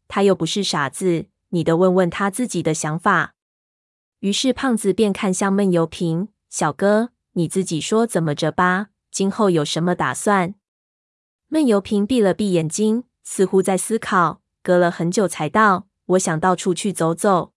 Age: 20-39